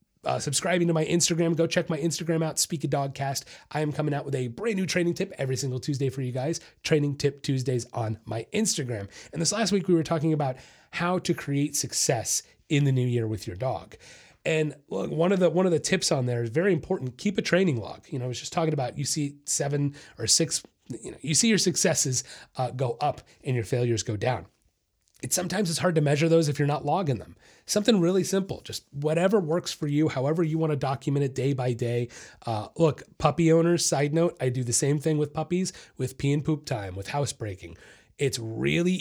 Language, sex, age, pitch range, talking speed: English, male, 30-49, 125-165 Hz, 230 wpm